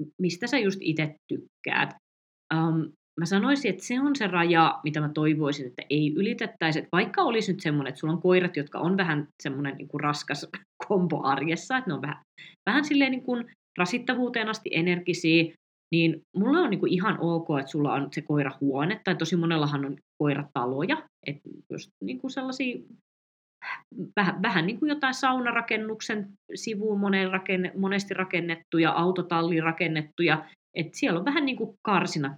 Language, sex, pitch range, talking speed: Finnish, female, 150-200 Hz, 160 wpm